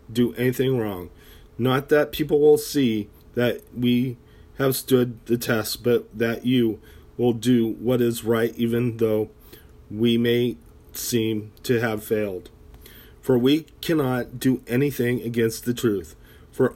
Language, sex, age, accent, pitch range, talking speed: English, male, 40-59, American, 105-125 Hz, 140 wpm